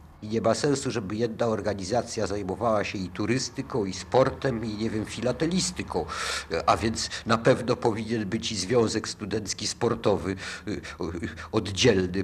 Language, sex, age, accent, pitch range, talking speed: Polish, male, 50-69, native, 95-120 Hz, 135 wpm